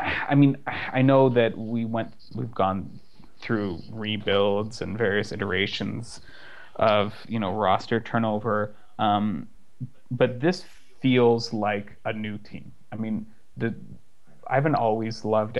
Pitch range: 105-120 Hz